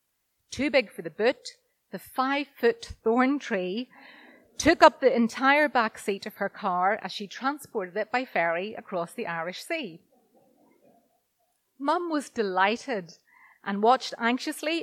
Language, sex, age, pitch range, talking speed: English, female, 30-49, 195-260 Hz, 140 wpm